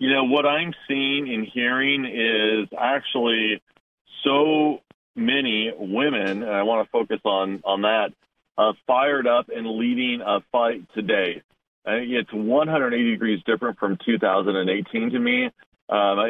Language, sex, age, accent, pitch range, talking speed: English, male, 40-59, American, 105-135 Hz, 130 wpm